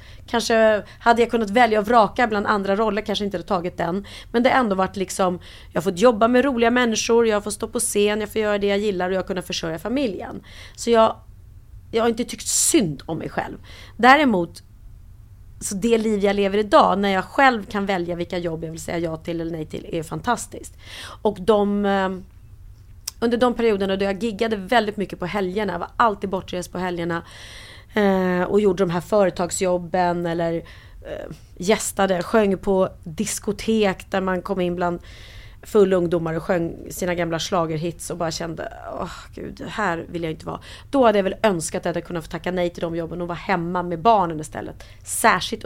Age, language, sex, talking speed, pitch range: 30-49, Swedish, female, 195 wpm, 170-210 Hz